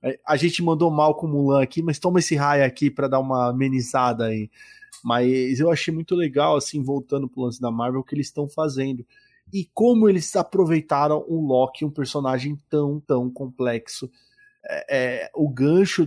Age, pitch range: 20-39, 120-150 Hz